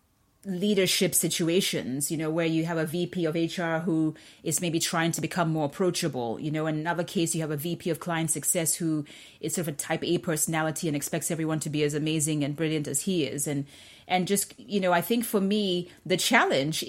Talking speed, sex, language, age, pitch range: 220 wpm, female, English, 30-49, 155-185 Hz